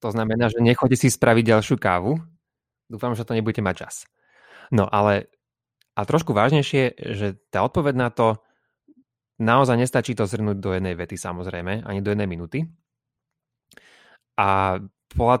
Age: 30-49